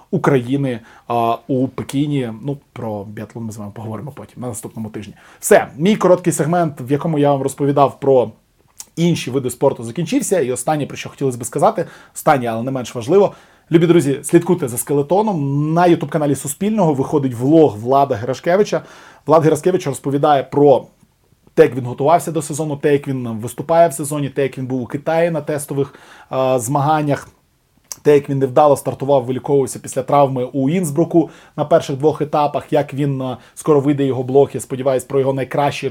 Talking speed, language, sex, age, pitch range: 170 wpm, Ukrainian, male, 20-39, 130-155 Hz